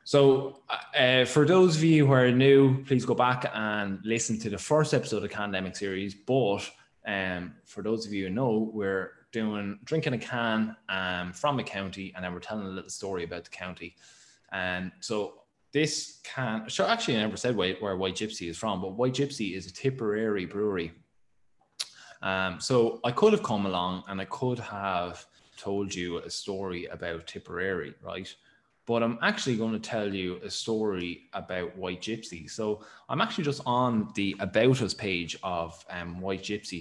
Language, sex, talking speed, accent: English, male, 185 wpm, Irish